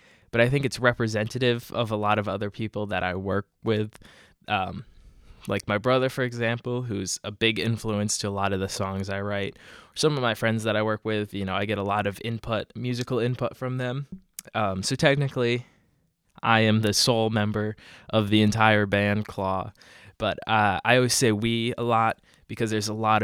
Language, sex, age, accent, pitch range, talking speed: English, male, 20-39, American, 105-120 Hz, 200 wpm